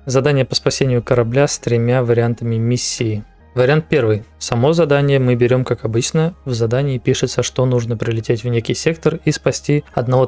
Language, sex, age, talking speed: Russian, male, 20-39, 165 wpm